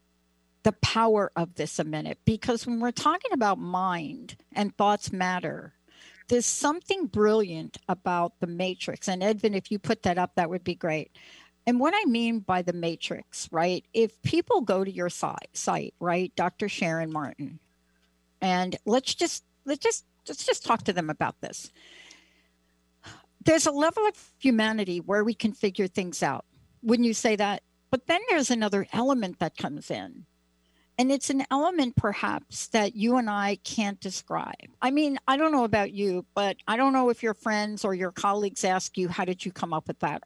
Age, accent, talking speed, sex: 60-79, American, 180 wpm, female